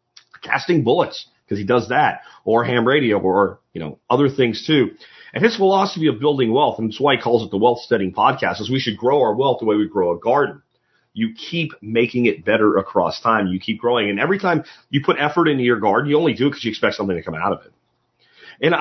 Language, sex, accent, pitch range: English, male, American, 115-155 Hz